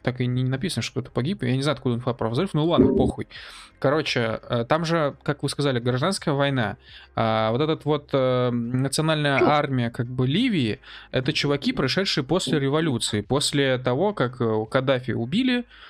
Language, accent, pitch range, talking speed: Russian, native, 115-145 Hz, 160 wpm